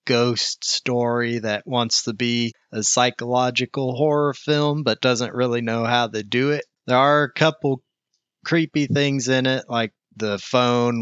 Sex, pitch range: male, 115-140 Hz